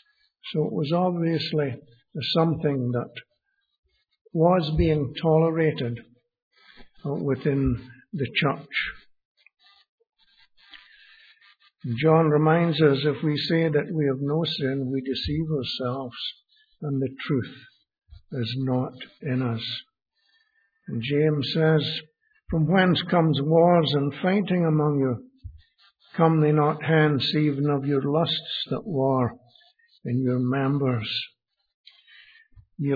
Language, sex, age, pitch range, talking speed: English, male, 60-79, 130-160 Hz, 105 wpm